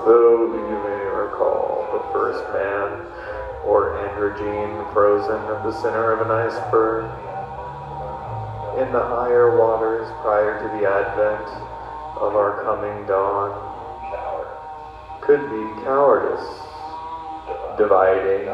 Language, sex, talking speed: English, male, 105 wpm